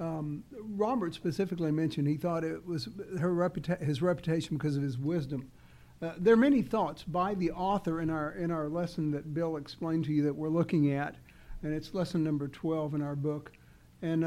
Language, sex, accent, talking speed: English, male, American, 200 wpm